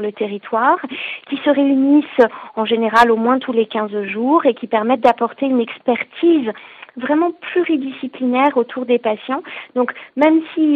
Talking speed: 150 wpm